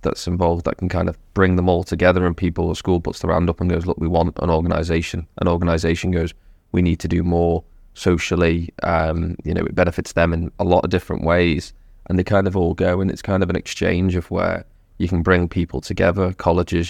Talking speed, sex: 235 wpm, male